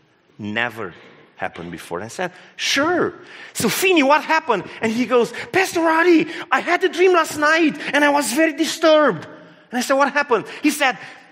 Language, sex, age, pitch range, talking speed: English, male, 40-59, 190-320 Hz, 170 wpm